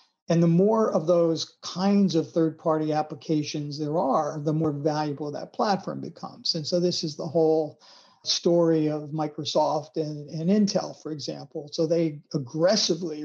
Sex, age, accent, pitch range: male, 50-69, American, 155-175 Hz